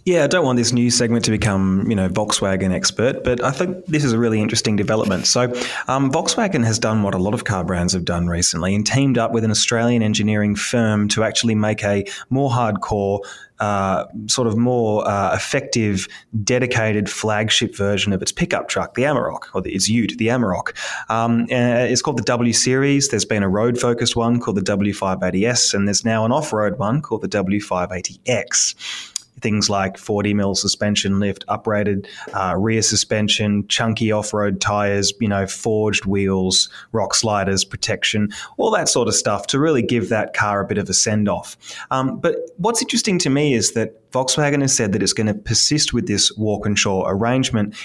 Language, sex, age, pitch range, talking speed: English, male, 20-39, 100-120 Hz, 185 wpm